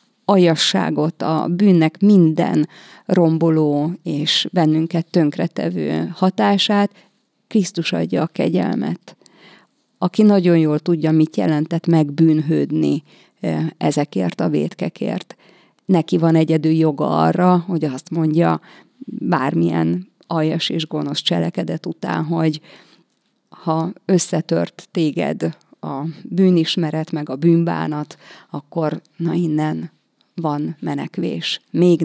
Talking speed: 100 wpm